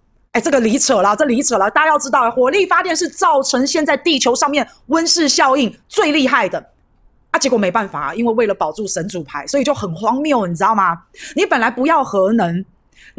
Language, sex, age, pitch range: Chinese, female, 30-49, 210-295 Hz